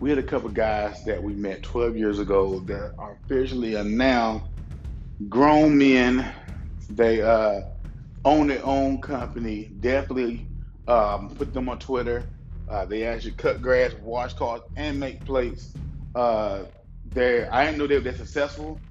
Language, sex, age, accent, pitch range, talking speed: English, male, 30-49, American, 100-130 Hz, 150 wpm